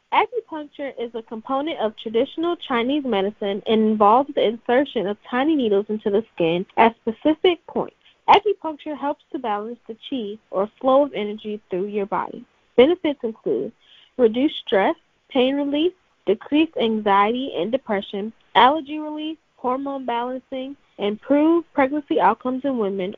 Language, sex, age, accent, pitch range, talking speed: English, female, 10-29, American, 215-285 Hz, 140 wpm